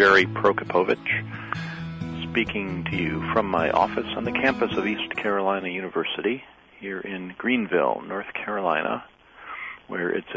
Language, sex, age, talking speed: English, male, 40-59, 125 wpm